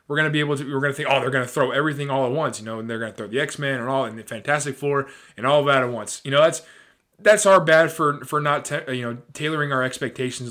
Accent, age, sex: American, 20-39, male